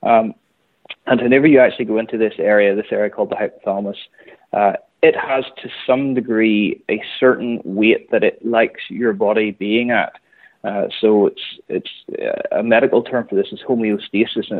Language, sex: English, male